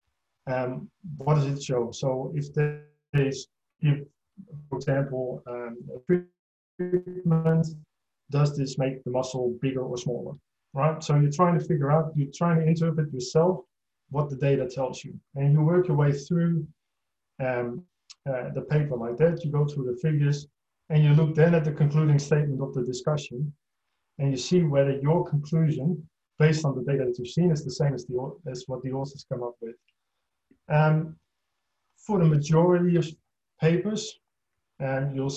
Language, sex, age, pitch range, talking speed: English, male, 30-49, 130-155 Hz, 170 wpm